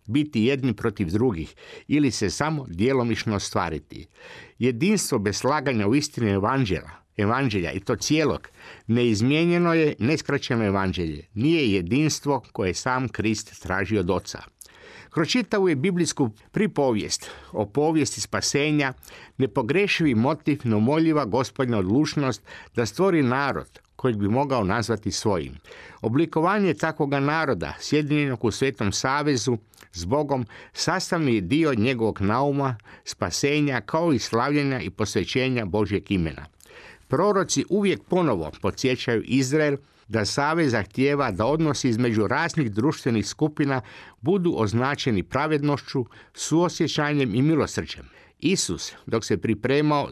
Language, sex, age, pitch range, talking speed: Croatian, male, 50-69, 110-150 Hz, 115 wpm